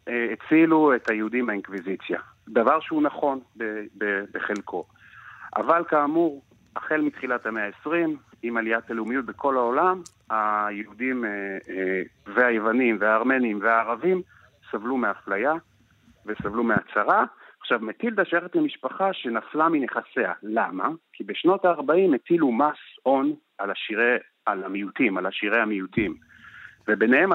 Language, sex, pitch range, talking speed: Hebrew, male, 105-155 Hz, 105 wpm